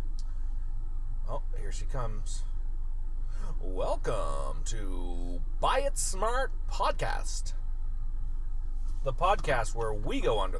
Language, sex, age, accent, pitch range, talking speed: English, male, 30-49, American, 95-125 Hz, 90 wpm